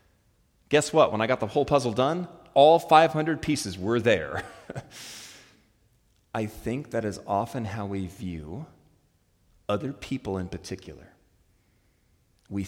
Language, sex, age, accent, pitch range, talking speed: English, male, 30-49, American, 100-160 Hz, 130 wpm